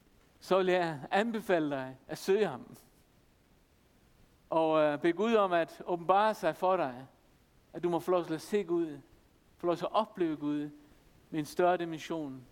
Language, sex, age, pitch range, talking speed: Danish, male, 60-79, 155-205 Hz, 175 wpm